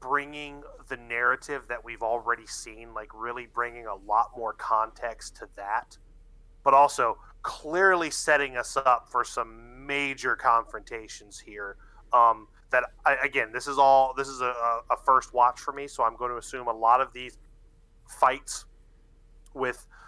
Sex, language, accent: male, English, American